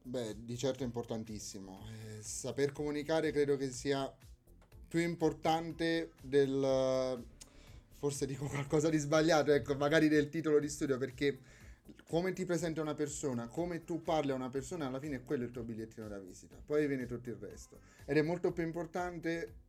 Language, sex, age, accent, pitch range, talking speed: Italian, male, 30-49, native, 125-155 Hz, 170 wpm